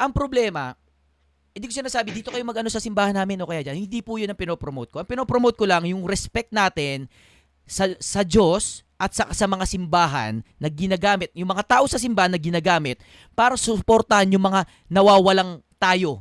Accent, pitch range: native, 160-220 Hz